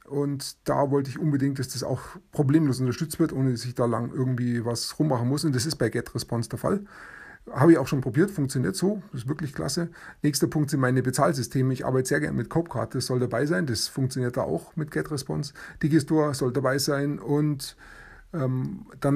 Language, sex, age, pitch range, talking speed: German, male, 30-49, 125-155 Hz, 205 wpm